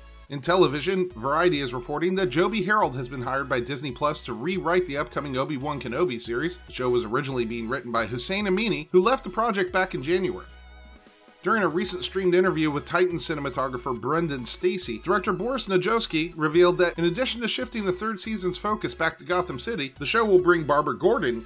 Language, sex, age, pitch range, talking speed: English, male, 30-49, 130-185 Hz, 195 wpm